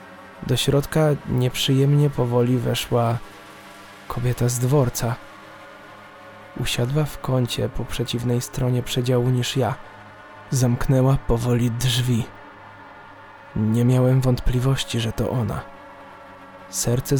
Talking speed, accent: 95 wpm, native